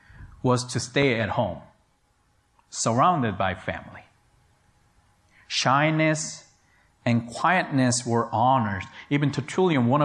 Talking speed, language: 95 wpm, English